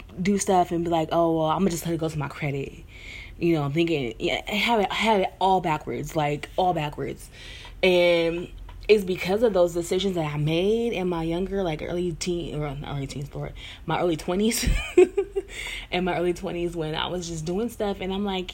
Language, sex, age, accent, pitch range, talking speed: English, female, 20-39, American, 150-195 Hz, 225 wpm